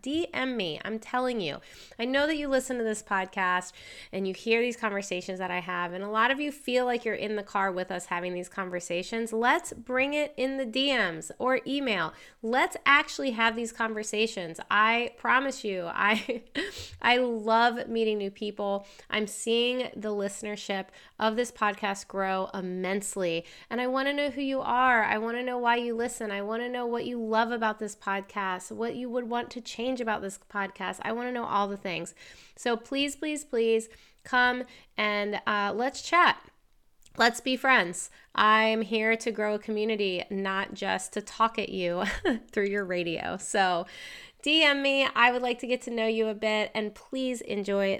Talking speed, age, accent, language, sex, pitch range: 185 wpm, 30-49, American, English, female, 195-245 Hz